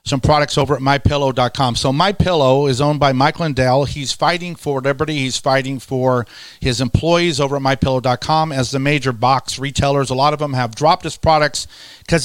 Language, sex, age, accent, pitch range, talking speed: English, male, 40-59, American, 135-160 Hz, 185 wpm